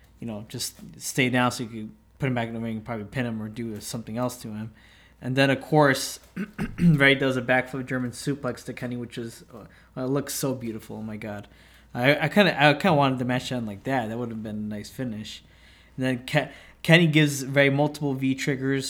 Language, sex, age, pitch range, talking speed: English, male, 20-39, 120-140 Hz, 240 wpm